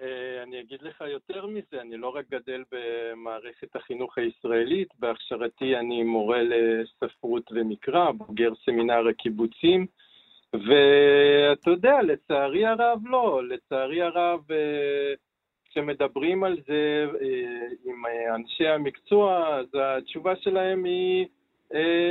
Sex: male